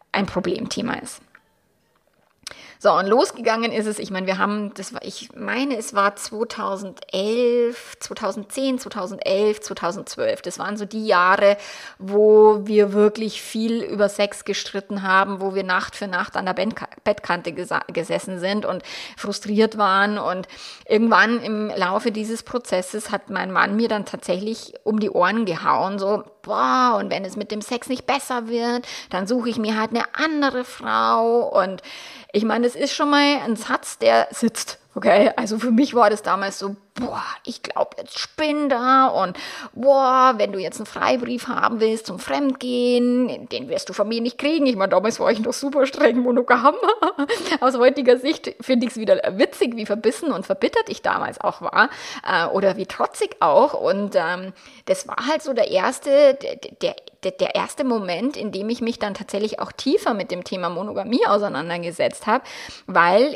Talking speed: 170 wpm